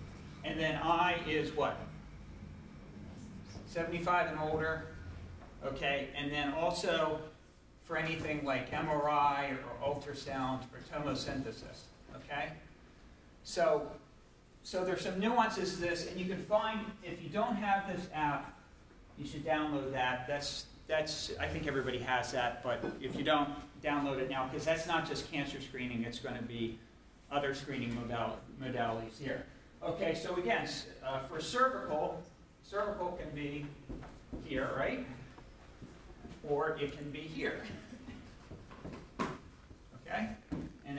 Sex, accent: male, American